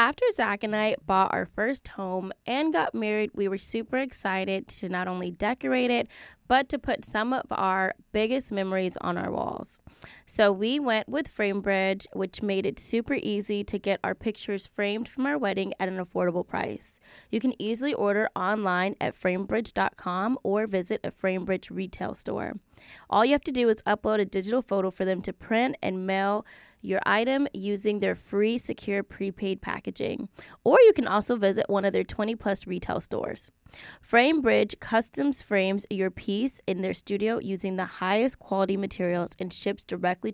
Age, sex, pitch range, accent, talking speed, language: 10-29, female, 190-230 Hz, American, 175 wpm, English